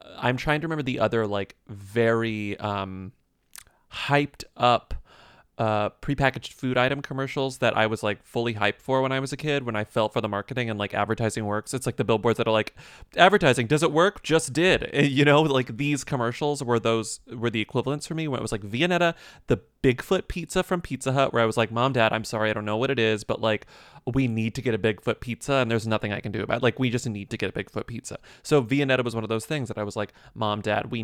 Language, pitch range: English, 110-150 Hz